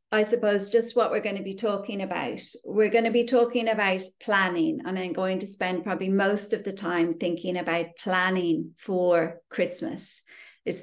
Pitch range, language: 185-230 Hz, English